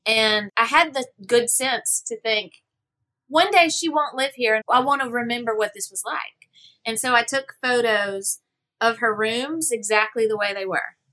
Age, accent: 30-49, American